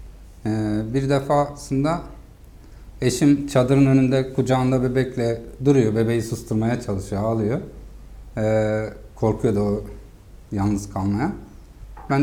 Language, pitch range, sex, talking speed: Turkish, 105-155 Hz, male, 100 wpm